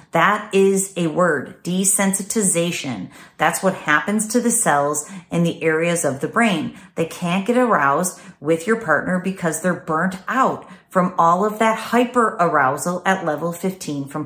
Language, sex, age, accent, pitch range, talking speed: English, female, 40-59, American, 155-205 Hz, 160 wpm